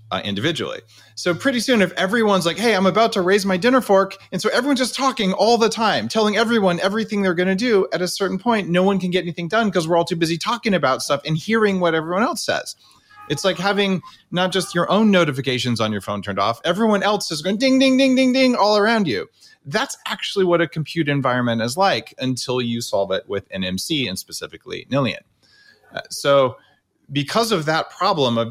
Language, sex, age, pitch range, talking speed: English, male, 30-49, 120-200 Hz, 220 wpm